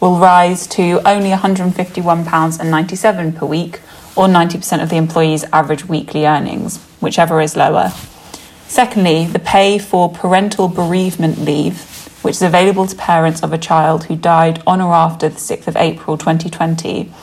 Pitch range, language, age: 160-185 Hz, English, 20-39